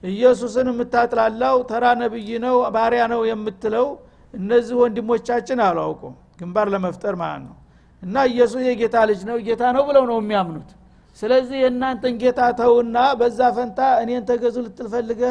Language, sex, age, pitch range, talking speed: Amharic, male, 60-79, 190-250 Hz, 130 wpm